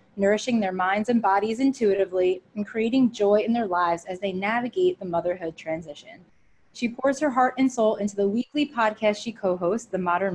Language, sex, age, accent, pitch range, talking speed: English, female, 20-39, American, 185-230 Hz, 185 wpm